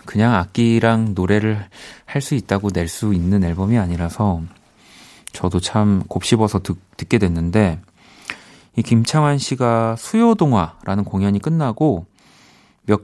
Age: 30-49